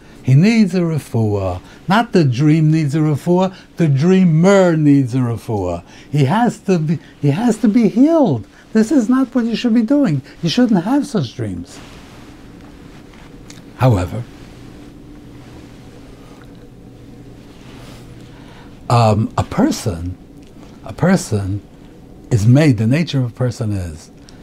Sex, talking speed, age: male, 125 wpm, 60-79